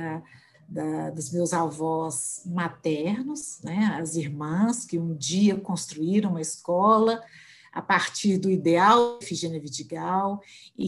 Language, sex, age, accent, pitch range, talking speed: Portuguese, female, 50-69, Brazilian, 170-230 Hz, 125 wpm